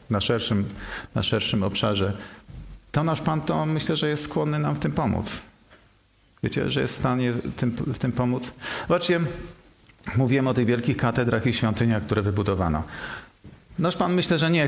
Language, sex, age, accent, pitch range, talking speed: Polish, male, 40-59, native, 105-125 Hz, 160 wpm